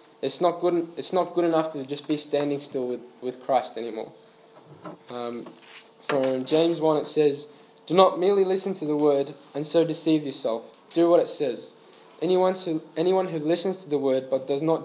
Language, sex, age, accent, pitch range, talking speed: English, male, 10-29, Australian, 135-170 Hz, 195 wpm